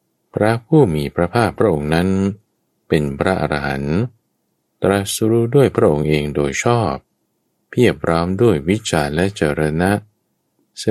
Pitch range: 75-100 Hz